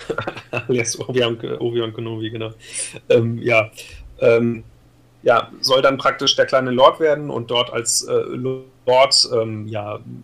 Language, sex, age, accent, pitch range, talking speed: German, male, 30-49, German, 110-130 Hz, 95 wpm